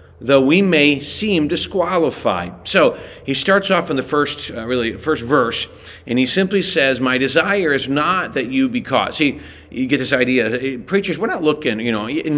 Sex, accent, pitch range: male, American, 120-155 Hz